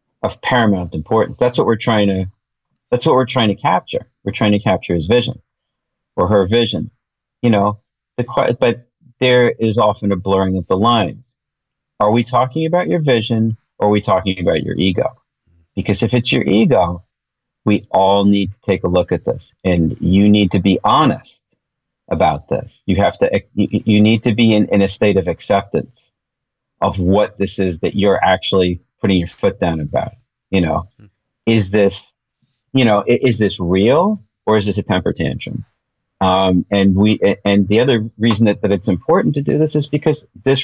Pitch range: 95-120 Hz